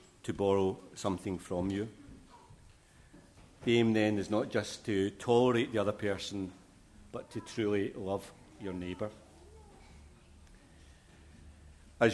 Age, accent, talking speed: 50-69, British, 115 wpm